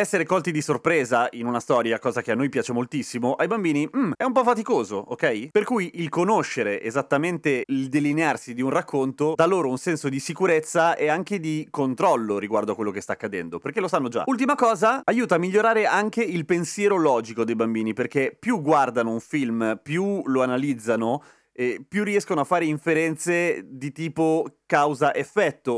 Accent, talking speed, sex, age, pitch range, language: native, 185 wpm, male, 30-49, 125-175 Hz, Italian